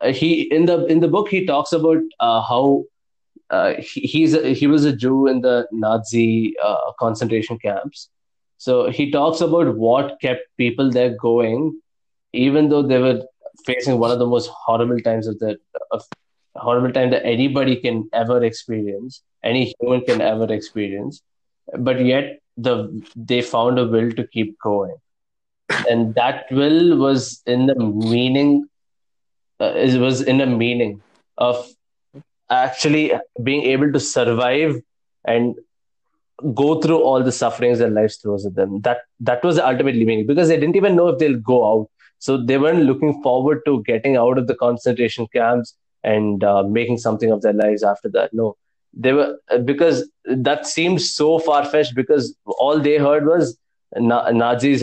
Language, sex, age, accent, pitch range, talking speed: English, male, 20-39, Indian, 115-145 Hz, 165 wpm